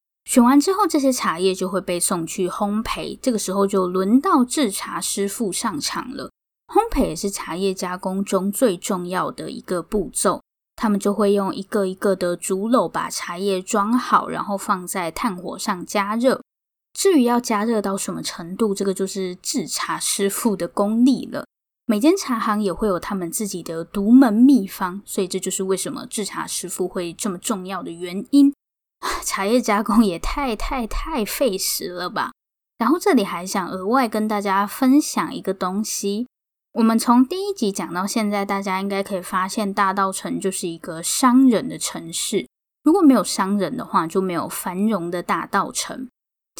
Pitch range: 190-245 Hz